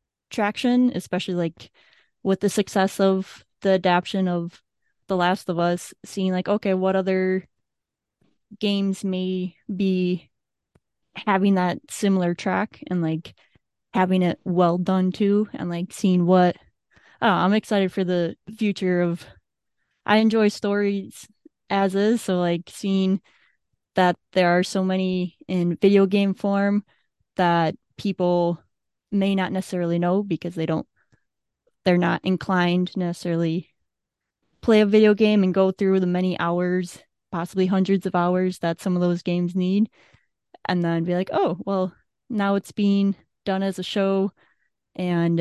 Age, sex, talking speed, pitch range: 20-39, female, 140 wpm, 175-195 Hz